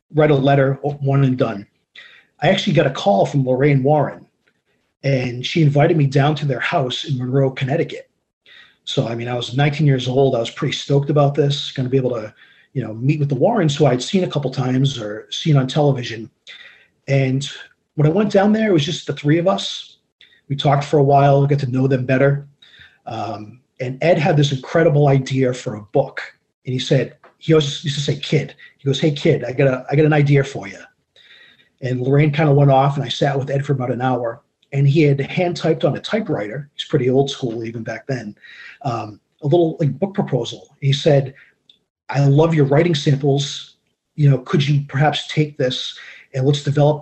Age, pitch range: 30-49, 130-150 Hz